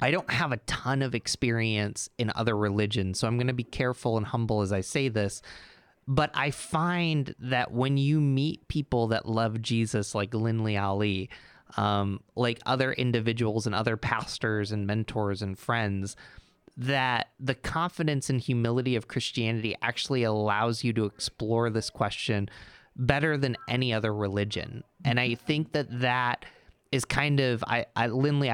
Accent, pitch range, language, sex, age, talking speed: American, 110-135 Hz, English, male, 20-39, 160 wpm